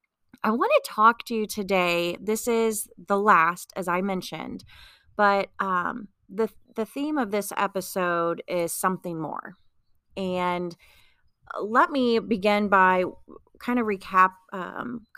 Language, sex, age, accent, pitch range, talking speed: English, female, 30-49, American, 170-215 Hz, 135 wpm